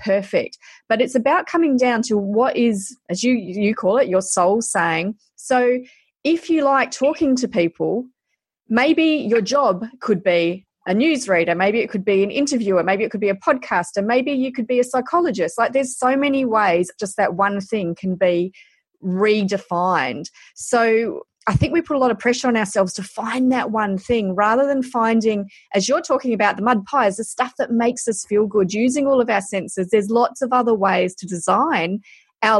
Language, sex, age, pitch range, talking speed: English, female, 30-49, 190-245 Hz, 195 wpm